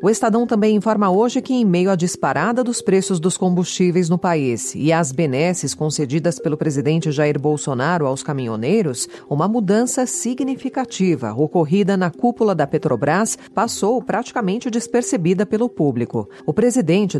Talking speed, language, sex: 145 wpm, Portuguese, female